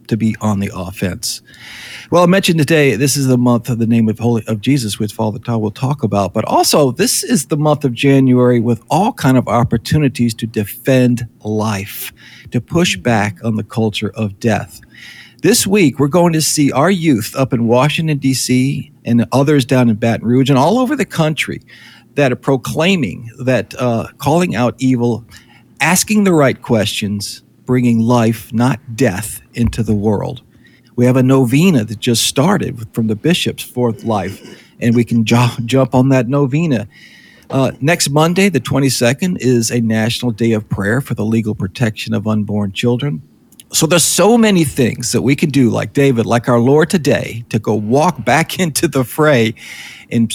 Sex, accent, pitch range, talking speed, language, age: male, American, 110-140 Hz, 180 wpm, English, 50-69